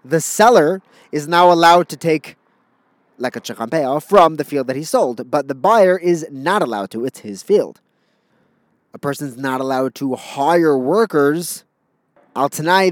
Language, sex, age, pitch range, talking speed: English, male, 30-49, 125-170 Hz, 165 wpm